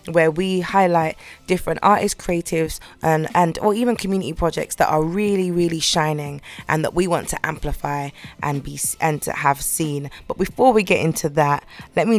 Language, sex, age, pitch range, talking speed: English, female, 20-39, 155-185 Hz, 180 wpm